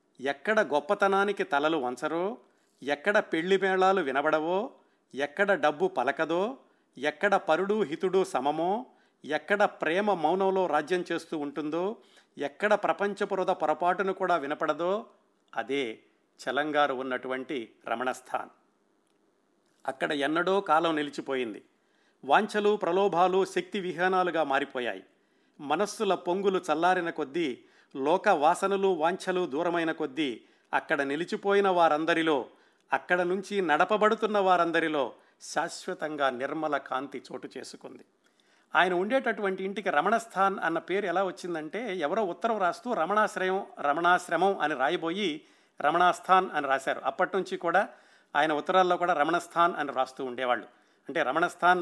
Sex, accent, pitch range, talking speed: male, native, 150-195 Hz, 105 wpm